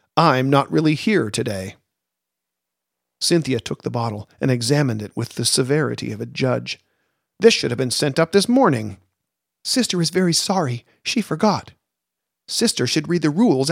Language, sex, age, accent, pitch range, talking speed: English, male, 50-69, American, 110-175 Hz, 160 wpm